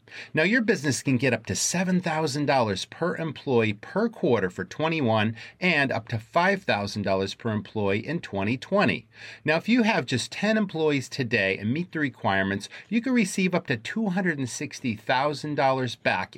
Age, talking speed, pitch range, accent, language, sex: 40-59, 150 wpm, 110-165 Hz, American, English, male